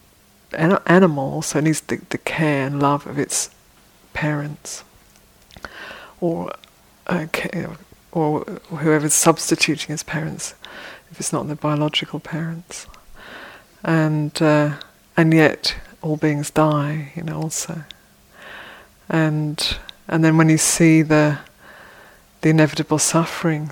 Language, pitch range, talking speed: English, 145-160 Hz, 115 wpm